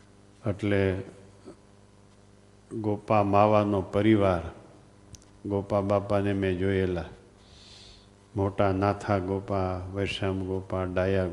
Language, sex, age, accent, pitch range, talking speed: Gujarati, male, 50-69, native, 95-100 Hz, 75 wpm